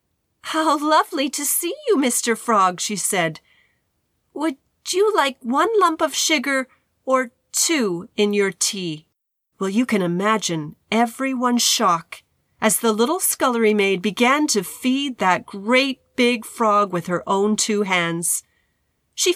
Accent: American